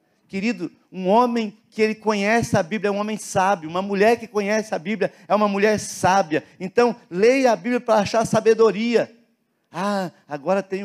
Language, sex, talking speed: Portuguese, male, 175 wpm